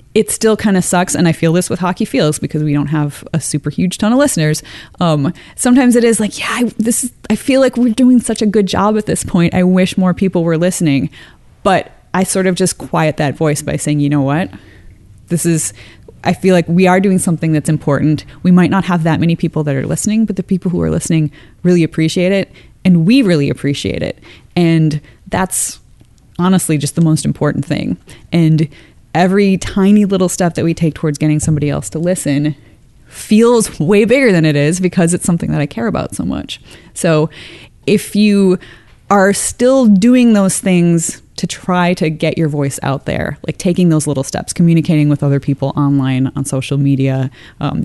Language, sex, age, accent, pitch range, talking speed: English, female, 20-39, American, 145-190 Hz, 205 wpm